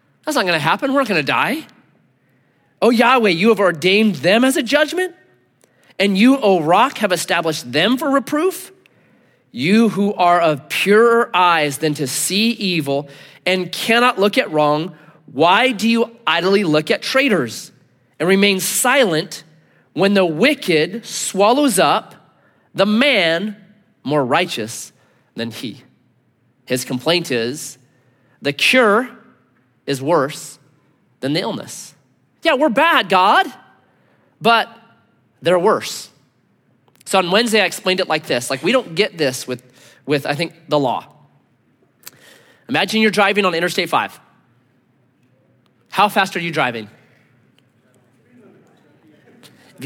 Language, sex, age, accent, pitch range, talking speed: English, male, 30-49, American, 140-220 Hz, 130 wpm